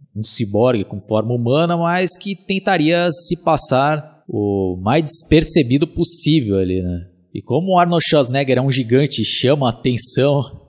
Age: 20-39